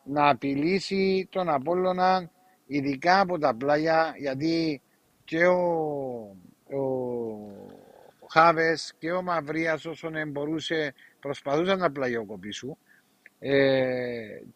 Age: 60-79